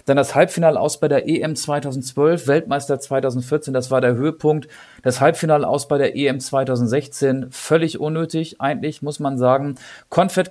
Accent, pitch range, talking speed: German, 130-150 Hz, 160 wpm